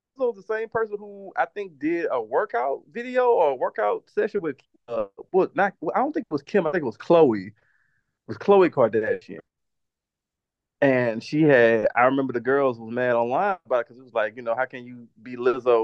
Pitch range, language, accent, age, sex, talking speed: 115-145 Hz, English, American, 30-49, male, 220 wpm